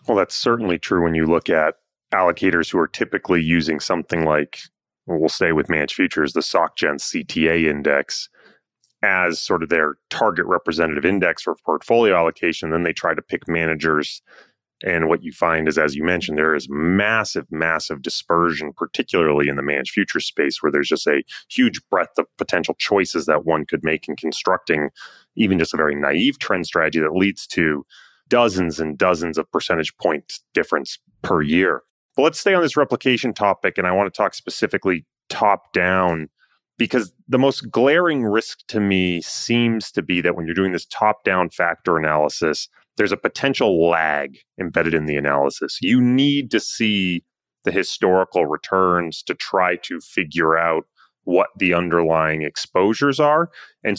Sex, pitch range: male, 80-110 Hz